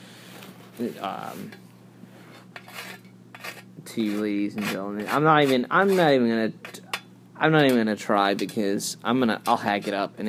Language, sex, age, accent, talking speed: English, male, 20-39, American, 150 wpm